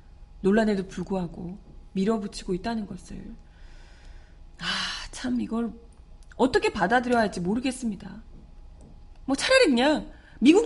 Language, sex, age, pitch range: Korean, female, 30-49, 175-285 Hz